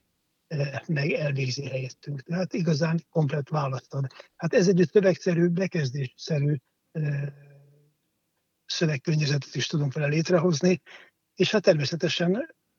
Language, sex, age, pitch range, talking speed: Hungarian, male, 60-79, 145-175 Hz, 95 wpm